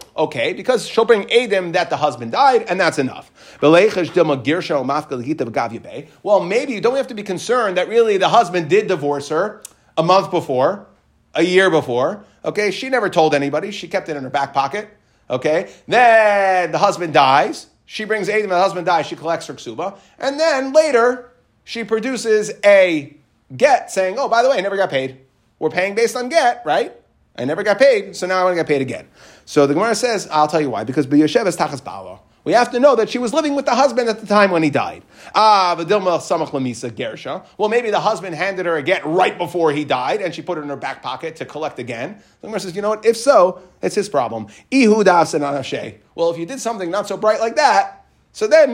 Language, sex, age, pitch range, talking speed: English, male, 30-49, 160-235 Hz, 205 wpm